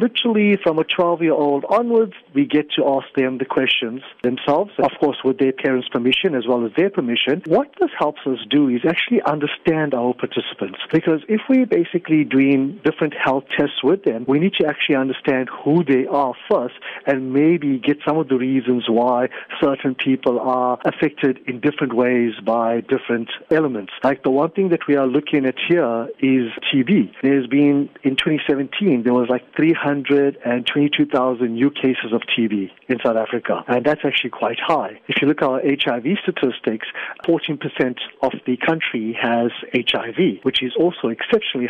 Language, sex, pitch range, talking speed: English, male, 125-165 Hz, 180 wpm